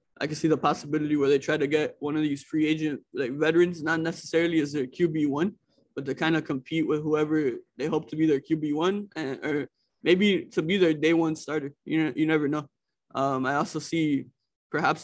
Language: English